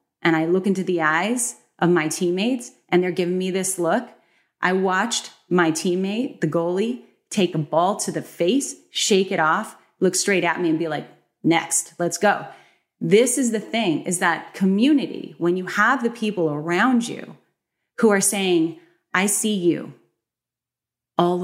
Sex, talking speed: female, 170 wpm